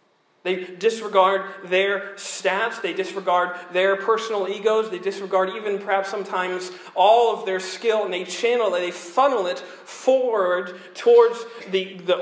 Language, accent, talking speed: English, American, 140 wpm